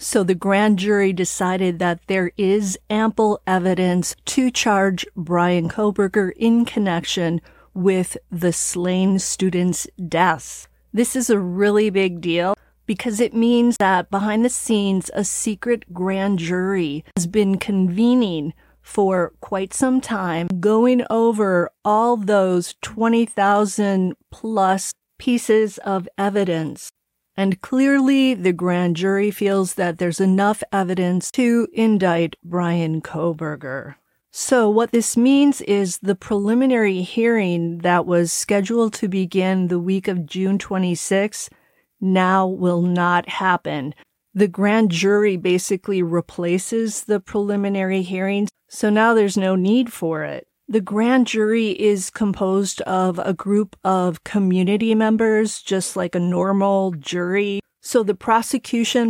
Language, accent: English, American